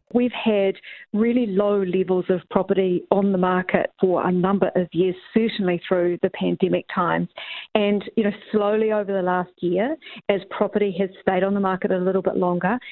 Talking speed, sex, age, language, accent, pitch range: 180 wpm, female, 40-59, English, Australian, 180-225 Hz